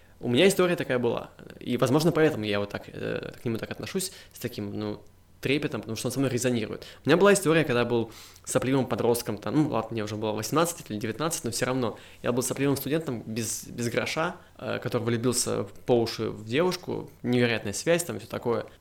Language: Russian